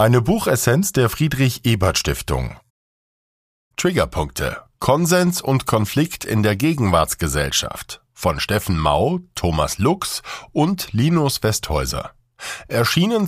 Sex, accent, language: male, German, German